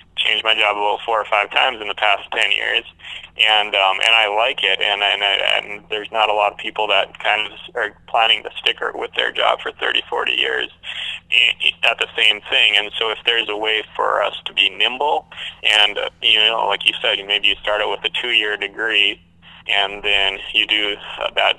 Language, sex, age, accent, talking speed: English, male, 20-39, American, 215 wpm